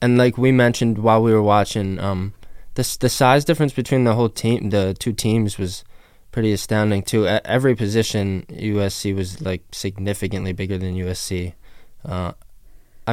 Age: 20-39